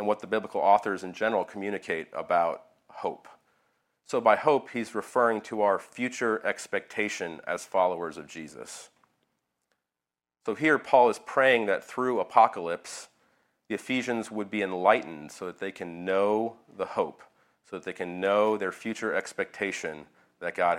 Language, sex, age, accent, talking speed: English, male, 40-59, American, 155 wpm